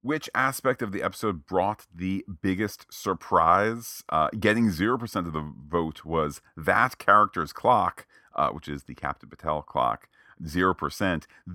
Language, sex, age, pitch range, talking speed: English, male, 40-59, 80-100 Hz, 140 wpm